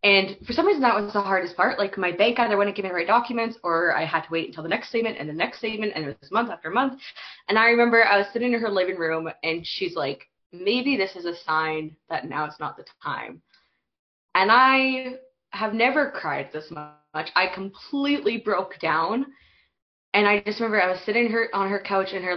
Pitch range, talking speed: 170-235 Hz, 230 wpm